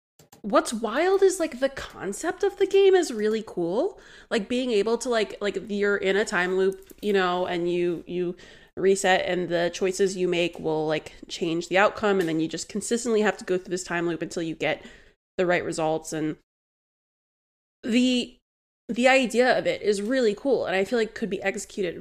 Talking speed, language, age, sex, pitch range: 200 wpm, English, 20-39, female, 185-245 Hz